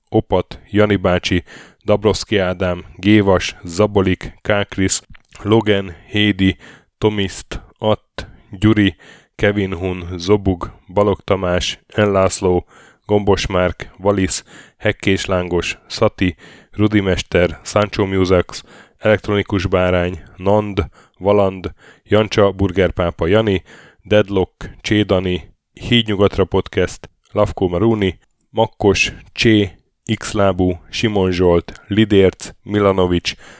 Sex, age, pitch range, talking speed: male, 10-29, 90-105 Hz, 90 wpm